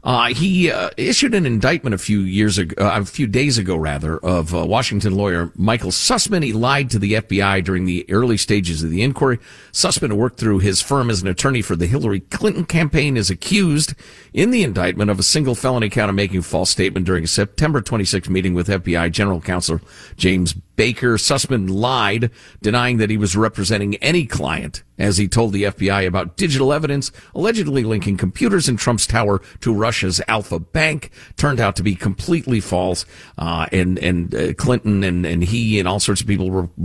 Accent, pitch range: American, 95-120 Hz